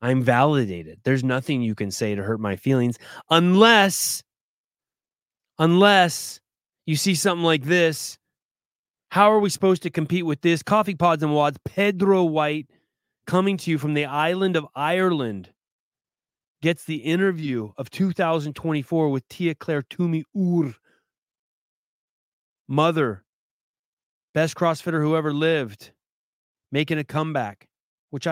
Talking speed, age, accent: 125 wpm, 30-49, American